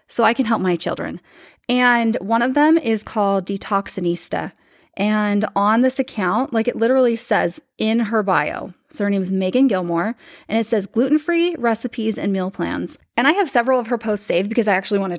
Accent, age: American, 20-39